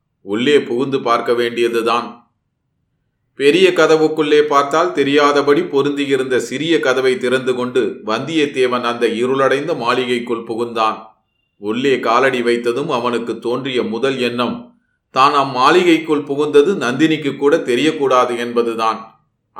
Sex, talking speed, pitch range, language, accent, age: male, 100 wpm, 120-150 Hz, Tamil, native, 30-49